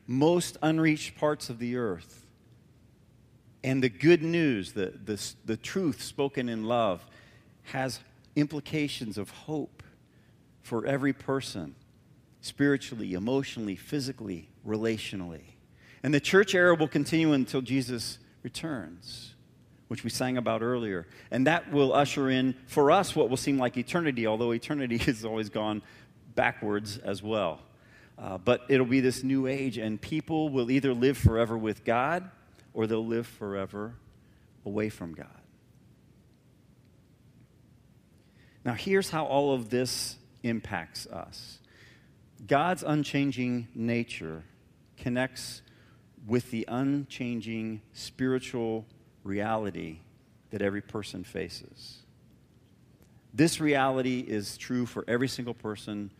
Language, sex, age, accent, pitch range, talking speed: English, male, 50-69, American, 110-135 Hz, 120 wpm